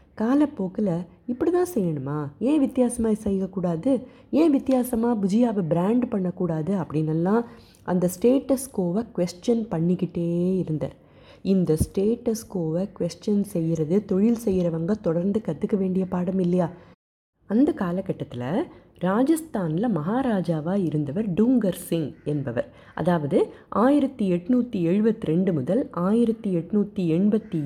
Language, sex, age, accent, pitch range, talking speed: Tamil, female, 20-39, native, 160-215 Hz, 85 wpm